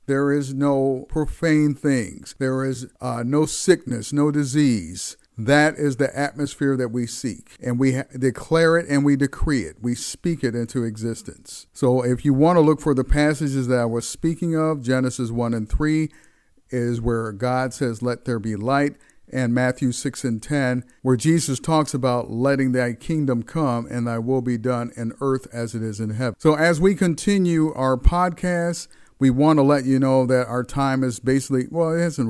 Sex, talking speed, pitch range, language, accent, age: male, 190 wpm, 120-145 Hz, English, American, 50-69